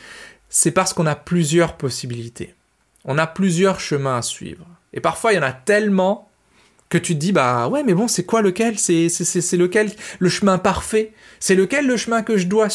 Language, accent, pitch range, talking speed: French, French, 145-195 Hz, 200 wpm